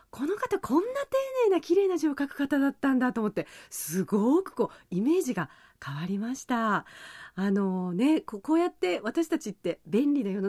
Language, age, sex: Japanese, 40-59, female